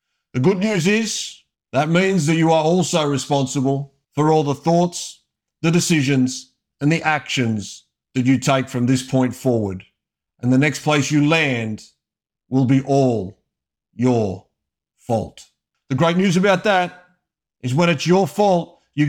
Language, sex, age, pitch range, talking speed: English, male, 50-69, 130-165 Hz, 155 wpm